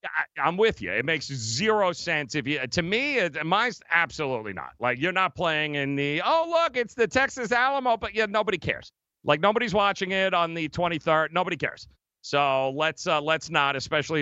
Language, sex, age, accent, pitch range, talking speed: English, male, 40-59, American, 140-185 Hz, 195 wpm